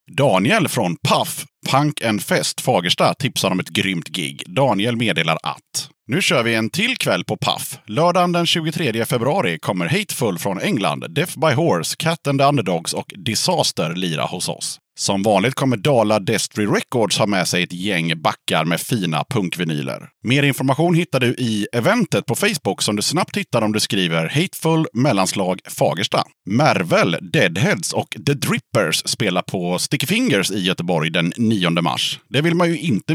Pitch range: 110-160 Hz